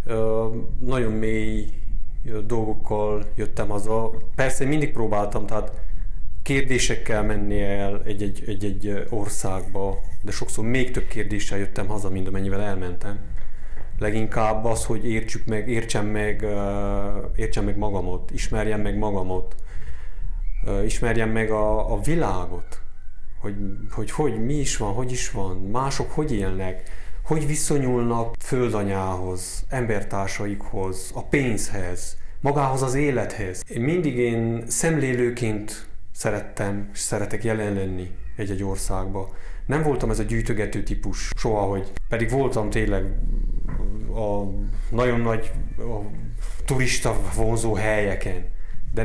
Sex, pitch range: male, 100-120 Hz